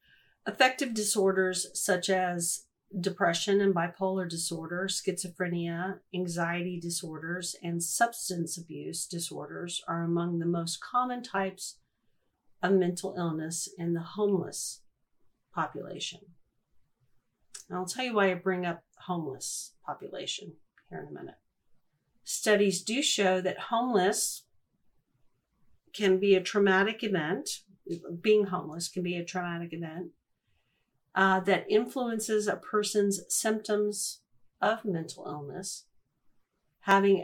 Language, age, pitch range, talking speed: English, 50-69, 170-195 Hz, 110 wpm